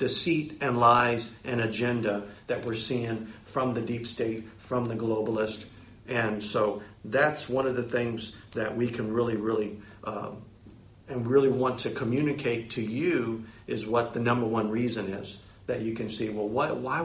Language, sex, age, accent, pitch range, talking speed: English, male, 50-69, American, 105-130 Hz, 175 wpm